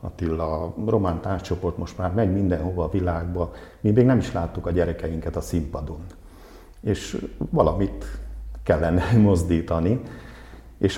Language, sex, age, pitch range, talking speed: Hungarian, male, 50-69, 80-95 Hz, 125 wpm